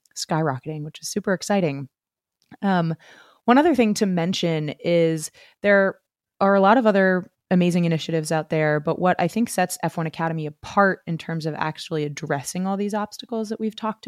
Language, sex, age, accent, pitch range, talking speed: English, female, 20-39, American, 150-180 Hz, 175 wpm